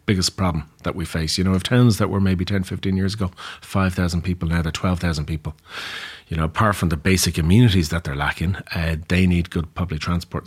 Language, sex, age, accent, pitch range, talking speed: English, male, 30-49, Irish, 90-105 Hz, 220 wpm